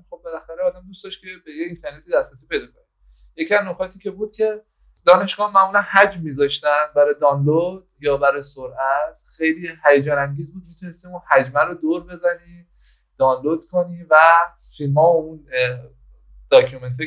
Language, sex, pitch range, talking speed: Persian, male, 140-190 Hz, 150 wpm